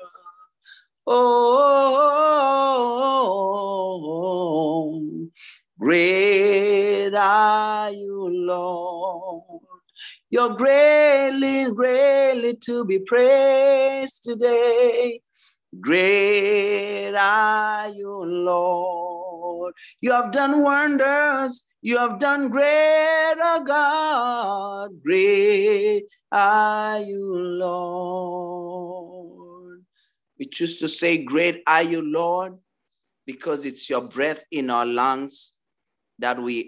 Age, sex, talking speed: 40-59, male, 75 wpm